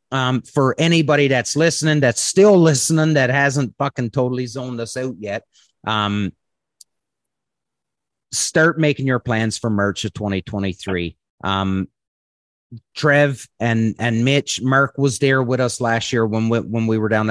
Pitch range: 110-135 Hz